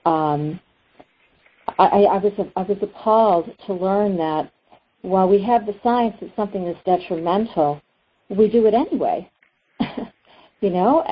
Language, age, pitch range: English, 50-69, 165-210 Hz